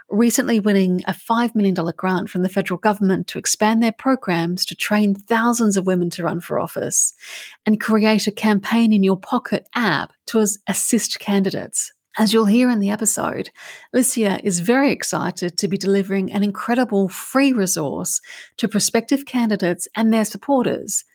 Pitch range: 190-235 Hz